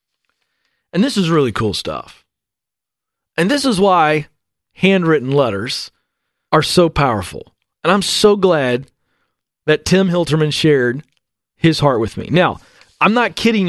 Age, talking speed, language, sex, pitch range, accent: 40-59, 135 wpm, English, male, 145-180 Hz, American